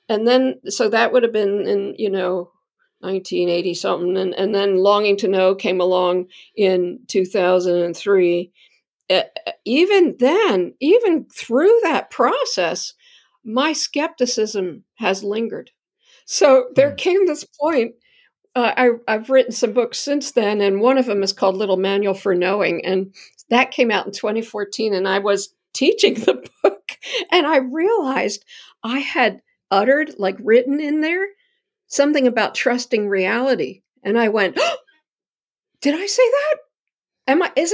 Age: 50-69